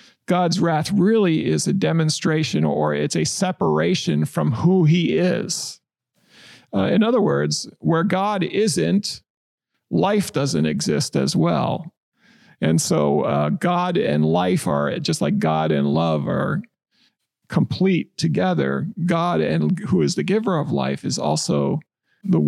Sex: male